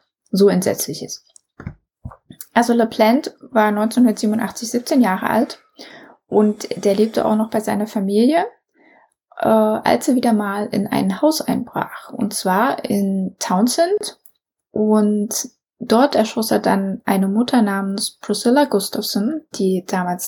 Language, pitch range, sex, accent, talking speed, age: German, 200-240 Hz, female, German, 125 wpm, 20-39